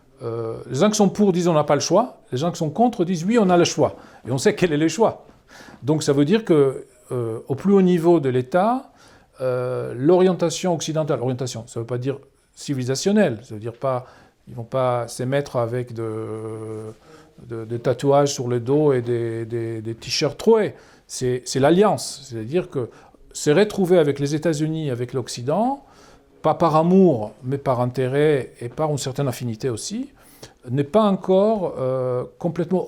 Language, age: French, 40-59